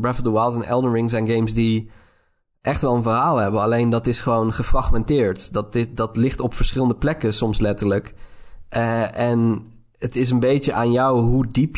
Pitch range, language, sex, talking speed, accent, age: 110-125 Hz, Dutch, male, 200 wpm, Dutch, 20-39